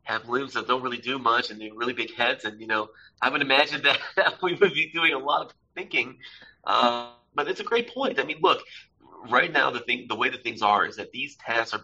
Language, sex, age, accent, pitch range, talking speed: English, male, 30-49, American, 110-165 Hz, 265 wpm